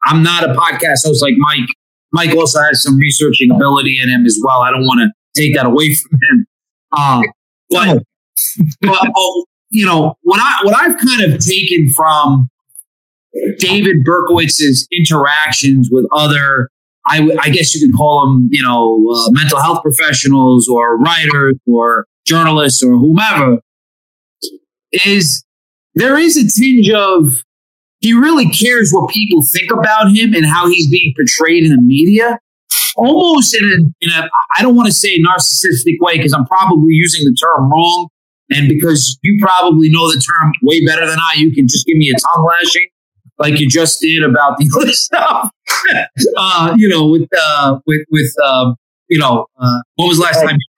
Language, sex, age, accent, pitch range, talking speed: English, male, 30-49, American, 140-190 Hz, 175 wpm